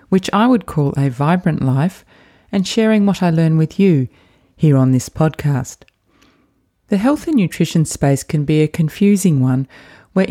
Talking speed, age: 170 wpm, 30-49